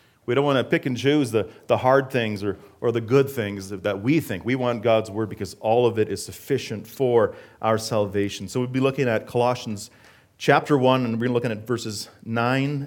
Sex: male